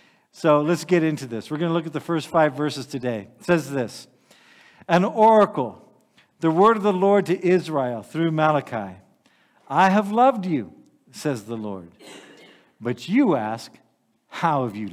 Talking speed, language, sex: 170 wpm, English, male